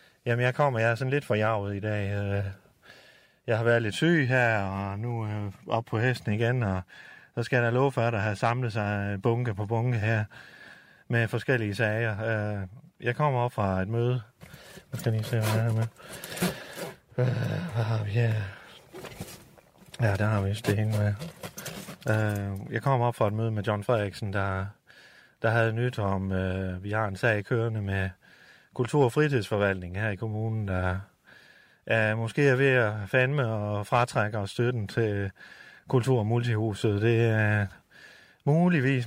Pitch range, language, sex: 105-125 Hz, Danish, male